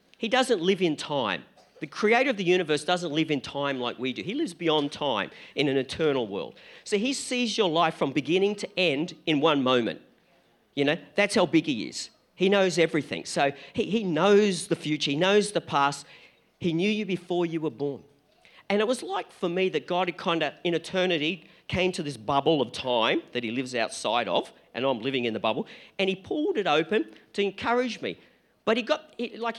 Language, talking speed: English, 215 wpm